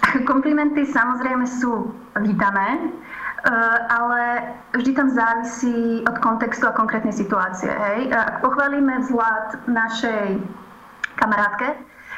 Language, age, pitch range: Slovak, 20-39, 210-245 Hz